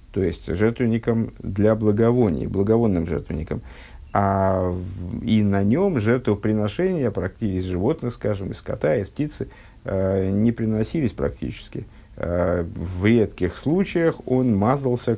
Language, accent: Russian, native